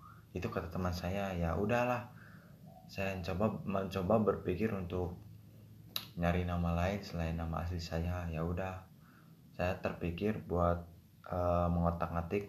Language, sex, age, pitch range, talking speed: Indonesian, male, 20-39, 85-100 Hz, 120 wpm